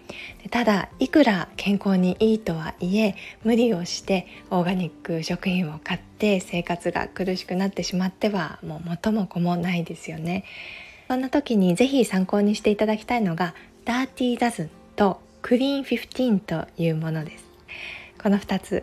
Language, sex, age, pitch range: Japanese, female, 20-39, 170-220 Hz